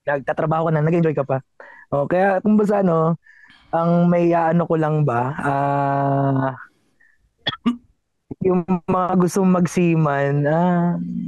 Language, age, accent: Filipino, 20-39, native